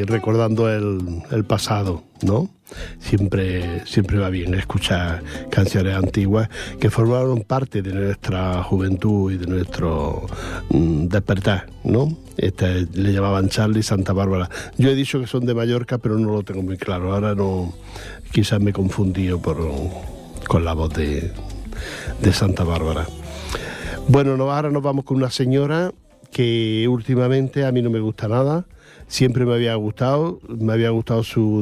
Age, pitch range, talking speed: 60-79, 95-115 Hz, 150 wpm